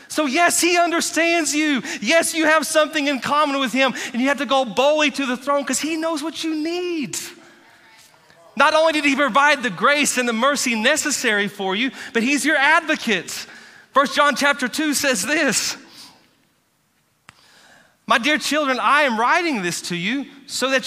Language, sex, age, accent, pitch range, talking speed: English, male, 30-49, American, 230-300 Hz, 180 wpm